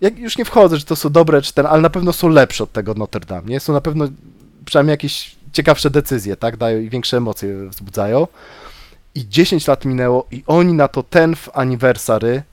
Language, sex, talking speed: Polish, male, 210 wpm